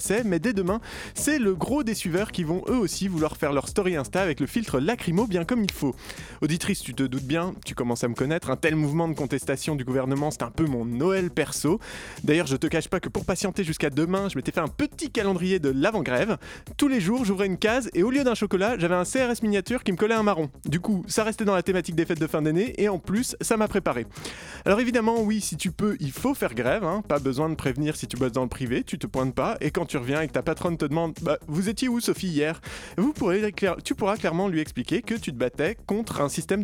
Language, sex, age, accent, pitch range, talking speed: French, male, 20-39, French, 145-200 Hz, 260 wpm